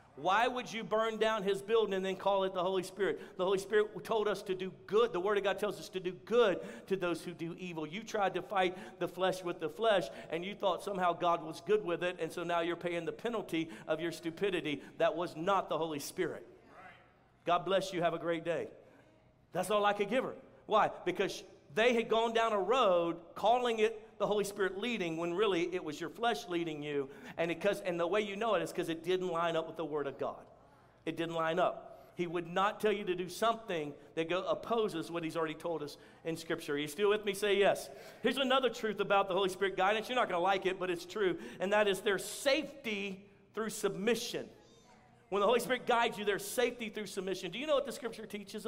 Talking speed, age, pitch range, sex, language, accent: 240 wpm, 50-69, 170-220 Hz, male, English, American